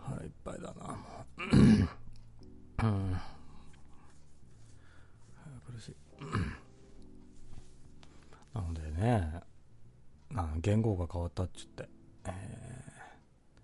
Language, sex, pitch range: Japanese, male, 80-115 Hz